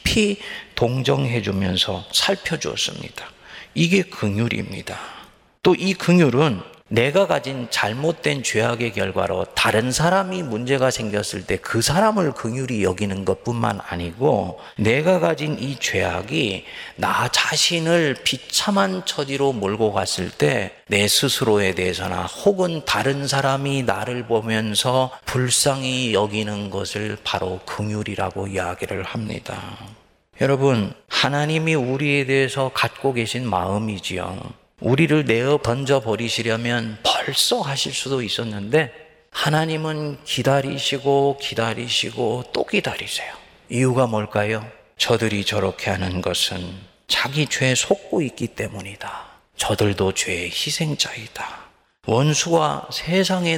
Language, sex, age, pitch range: Korean, male, 40-59, 105-145 Hz